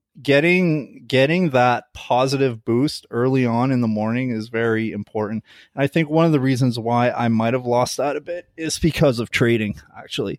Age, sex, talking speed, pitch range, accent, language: 20-39, male, 190 wpm, 115-130 Hz, American, English